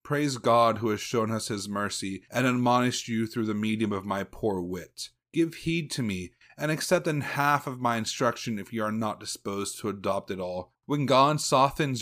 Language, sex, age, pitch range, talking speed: English, male, 30-49, 110-135 Hz, 205 wpm